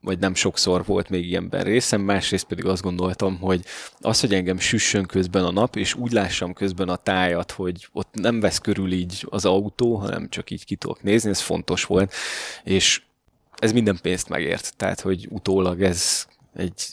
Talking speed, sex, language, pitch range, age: 185 wpm, male, Hungarian, 95-110 Hz, 20-39